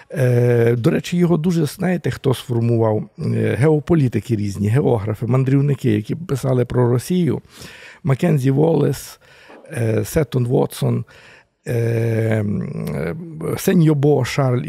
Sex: male